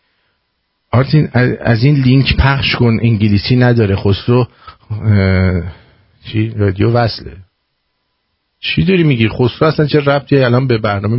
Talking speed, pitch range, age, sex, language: 120 wpm, 95-125 Hz, 50-69, male, English